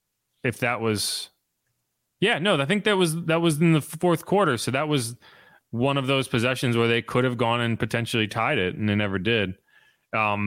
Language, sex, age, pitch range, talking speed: English, male, 30-49, 130-205 Hz, 205 wpm